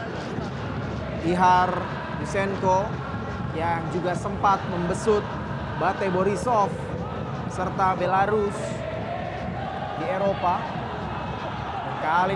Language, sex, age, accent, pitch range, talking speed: Indonesian, male, 20-39, native, 185-215 Hz, 65 wpm